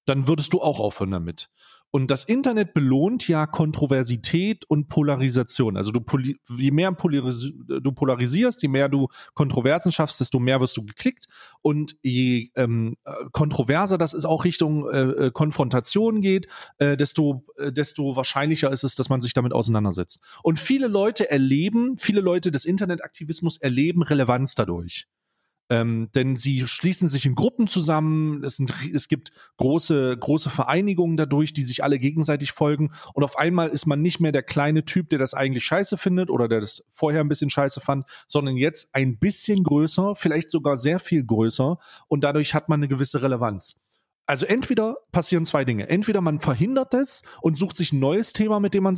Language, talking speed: German, 175 wpm